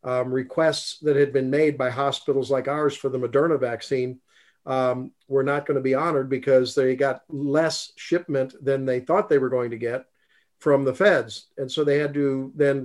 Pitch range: 130-155 Hz